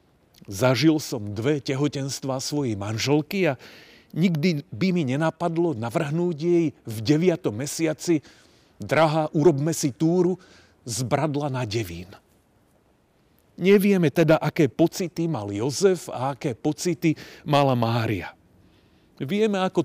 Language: Slovak